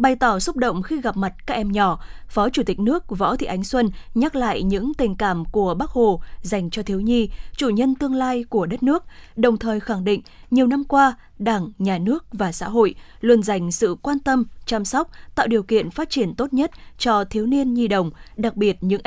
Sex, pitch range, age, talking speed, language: female, 200-255 Hz, 20-39, 225 wpm, Vietnamese